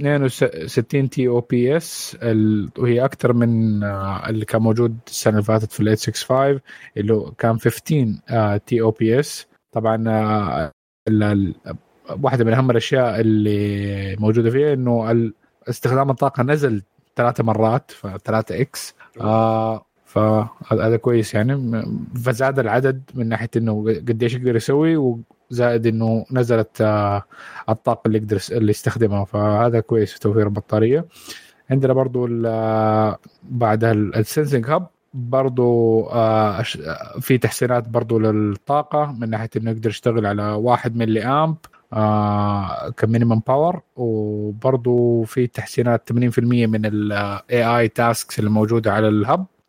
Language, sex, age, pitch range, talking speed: Arabic, male, 20-39, 110-125 Hz, 120 wpm